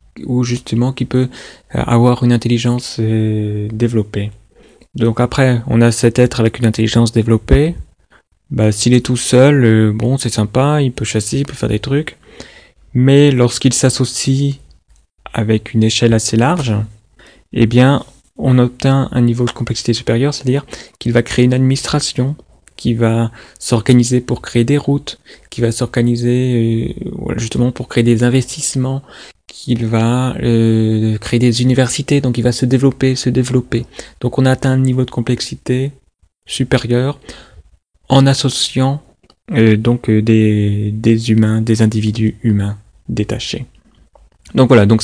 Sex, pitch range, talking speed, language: male, 110-130 Hz, 145 wpm, English